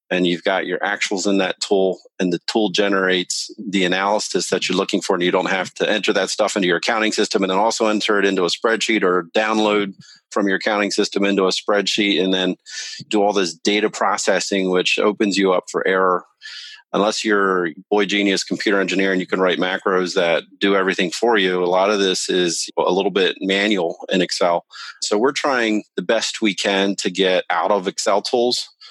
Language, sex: English, male